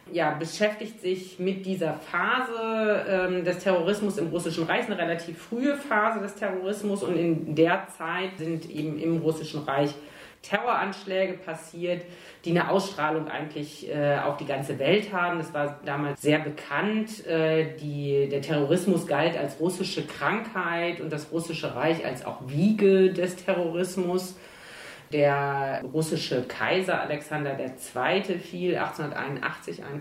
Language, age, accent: German, 40-59, German